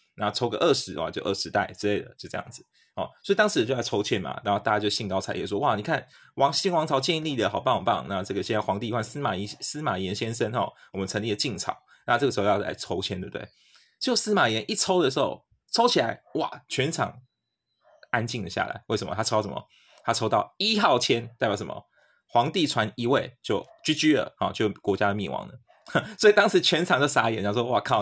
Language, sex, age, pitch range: Chinese, male, 20-39, 105-155 Hz